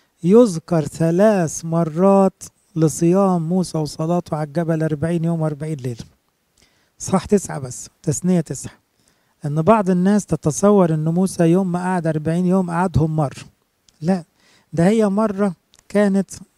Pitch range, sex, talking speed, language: 155-185 Hz, male, 125 wpm, English